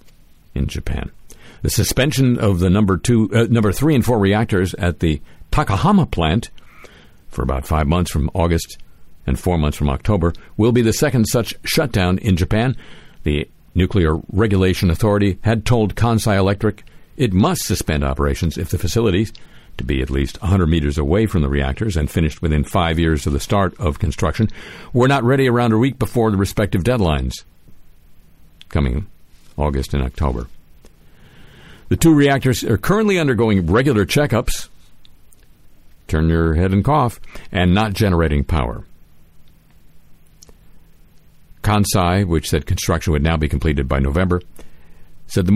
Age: 50-69